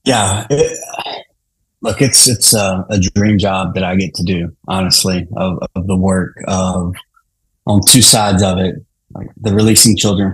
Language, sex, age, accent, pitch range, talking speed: English, male, 30-49, American, 95-115 Hz, 170 wpm